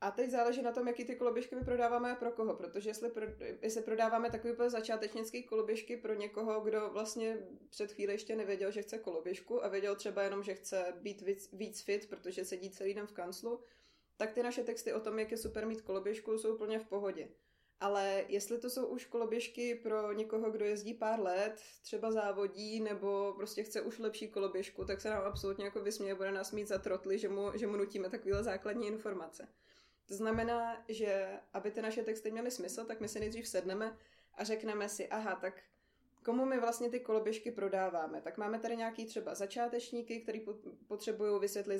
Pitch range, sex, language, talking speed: 200-225 Hz, female, Czech, 190 wpm